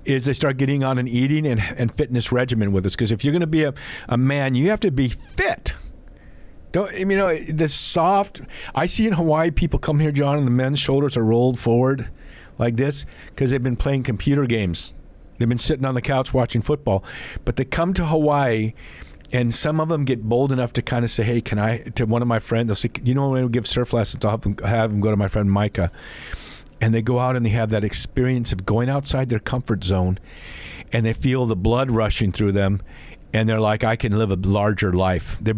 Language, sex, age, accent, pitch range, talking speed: English, male, 50-69, American, 110-150 Hz, 235 wpm